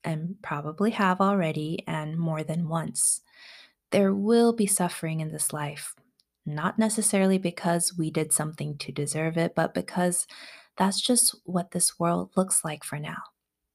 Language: English